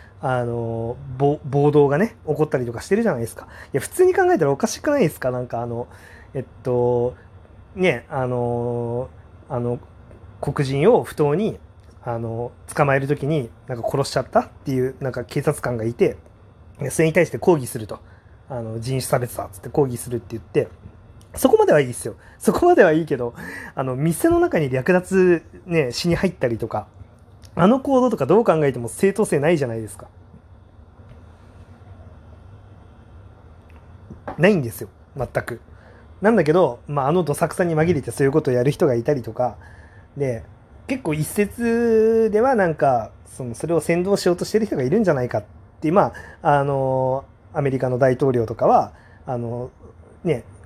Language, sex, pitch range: Japanese, male, 110-155 Hz